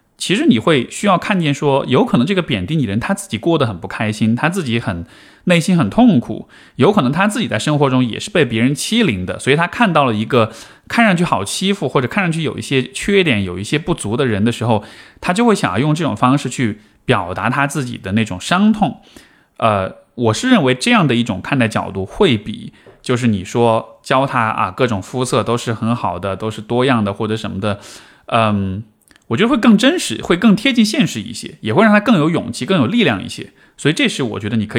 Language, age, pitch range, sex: Chinese, 20-39, 110-175 Hz, male